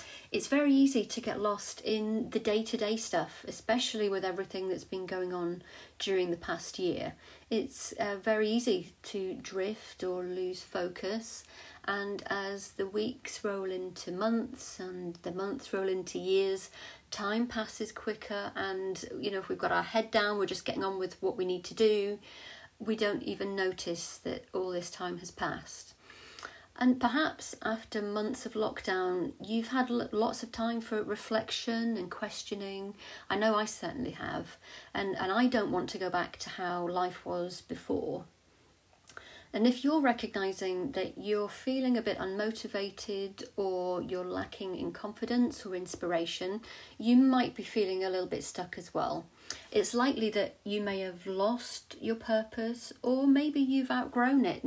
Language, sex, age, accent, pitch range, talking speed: English, female, 40-59, British, 190-230 Hz, 165 wpm